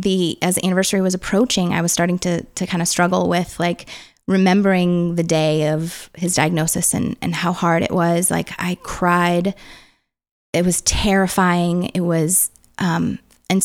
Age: 20-39